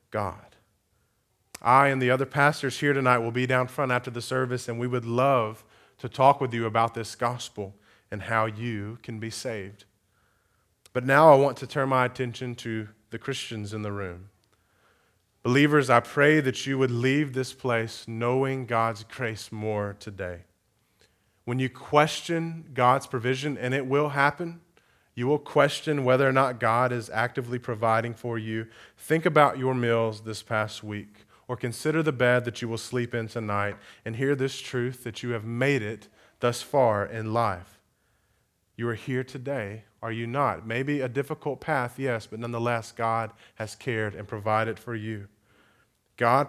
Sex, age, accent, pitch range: male, 30-49, American, 110-130 Hz